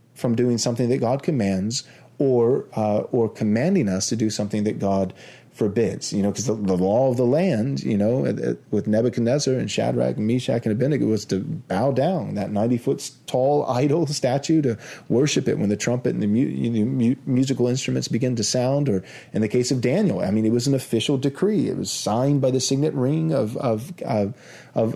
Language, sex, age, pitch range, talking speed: English, male, 30-49, 110-140 Hz, 210 wpm